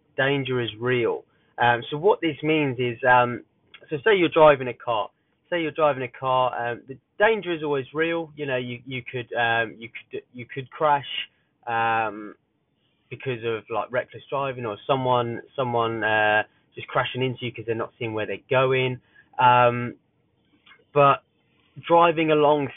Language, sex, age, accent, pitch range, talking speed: English, male, 20-39, British, 125-155 Hz, 165 wpm